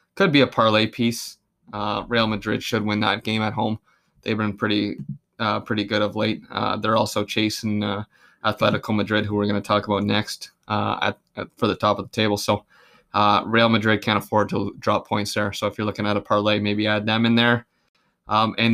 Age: 20-39